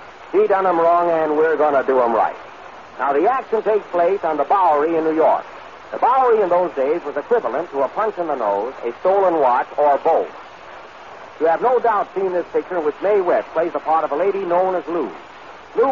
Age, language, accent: 60-79, English, American